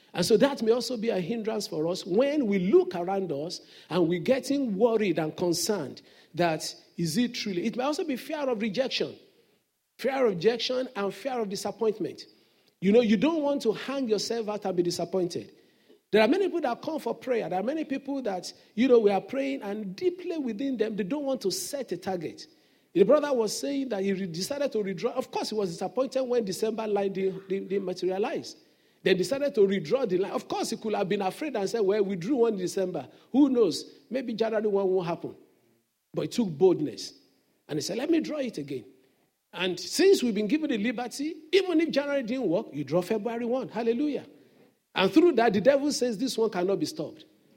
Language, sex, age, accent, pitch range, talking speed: English, male, 50-69, Nigerian, 195-275 Hz, 210 wpm